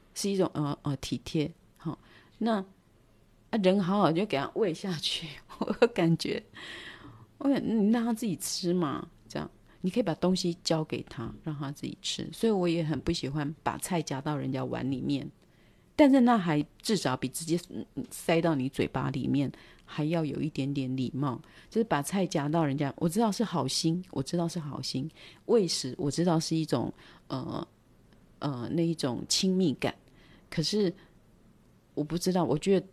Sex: female